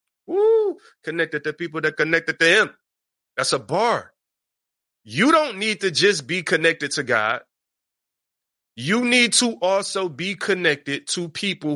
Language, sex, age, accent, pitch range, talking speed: English, male, 30-49, American, 150-195 Hz, 145 wpm